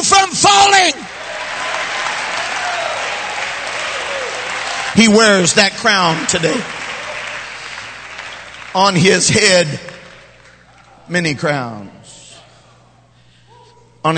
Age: 50-69